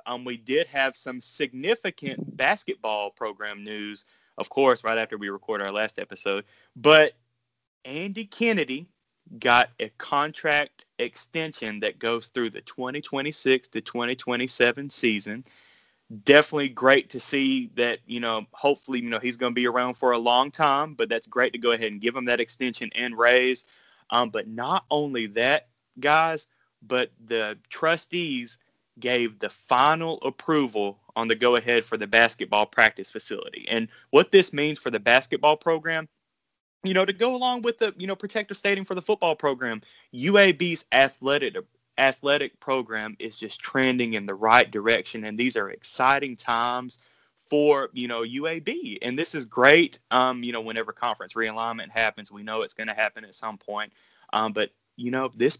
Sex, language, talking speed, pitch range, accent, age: male, English, 165 wpm, 115-155 Hz, American, 30-49